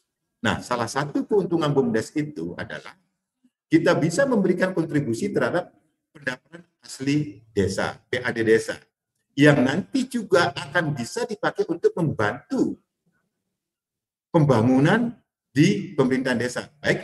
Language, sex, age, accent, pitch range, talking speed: Indonesian, male, 50-69, native, 130-195 Hz, 105 wpm